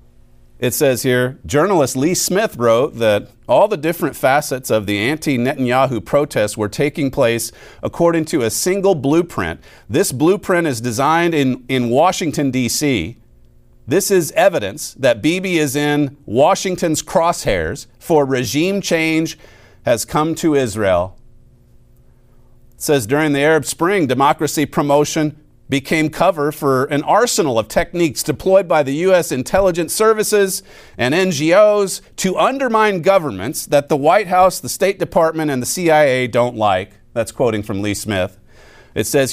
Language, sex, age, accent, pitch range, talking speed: English, male, 50-69, American, 125-175 Hz, 140 wpm